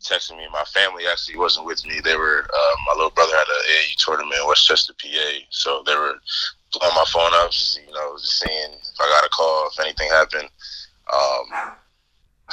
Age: 20-39